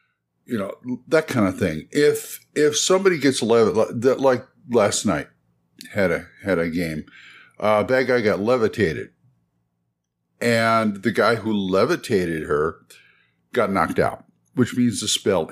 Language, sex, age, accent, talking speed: English, male, 60-79, American, 145 wpm